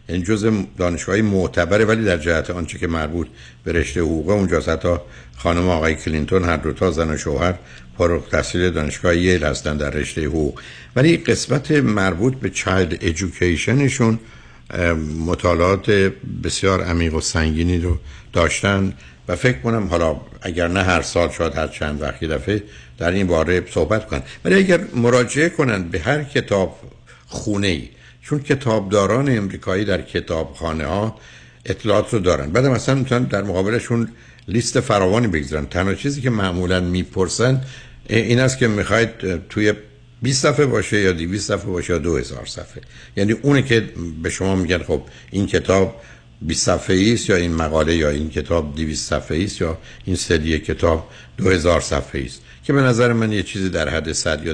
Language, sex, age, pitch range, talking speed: Persian, male, 60-79, 80-110 Hz, 160 wpm